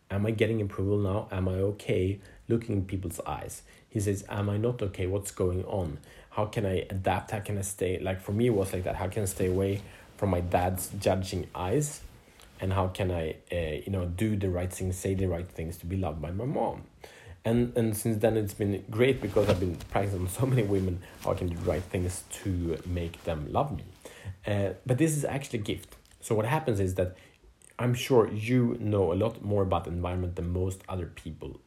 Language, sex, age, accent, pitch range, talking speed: Swedish, male, 30-49, Norwegian, 90-105 Hz, 225 wpm